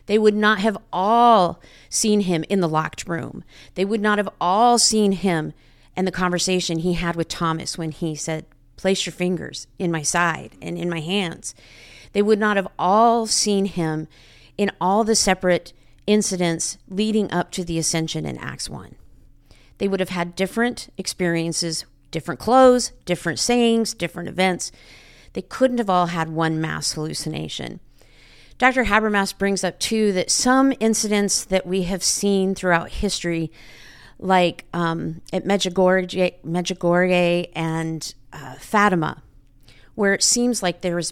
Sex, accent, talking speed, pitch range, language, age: female, American, 155 wpm, 165-200 Hz, English, 50-69